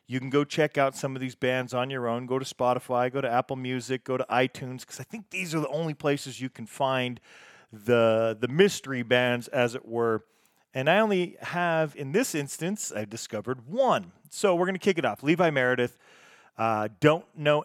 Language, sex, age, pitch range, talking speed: English, male, 40-59, 125-155 Hz, 215 wpm